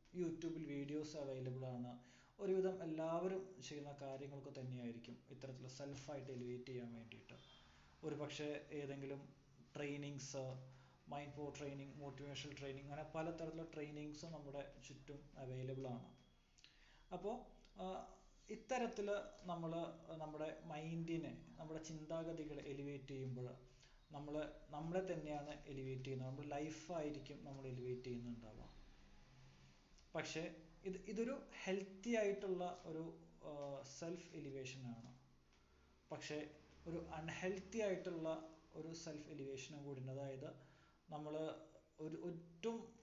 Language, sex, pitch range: Malayalam, male, 135-160 Hz